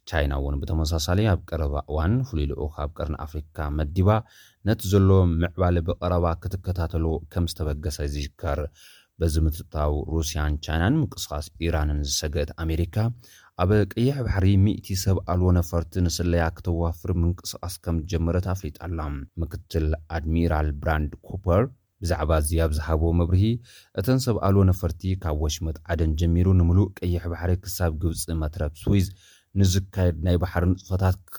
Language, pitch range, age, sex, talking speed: Amharic, 80-95 Hz, 30-49, male, 115 wpm